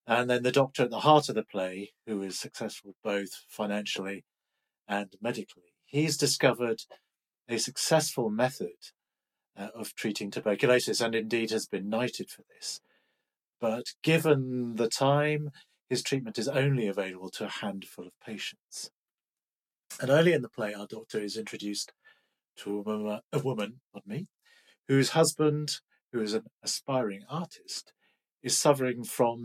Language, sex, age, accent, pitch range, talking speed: English, male, 40-59, British, 105-140 Hz, 145 wpm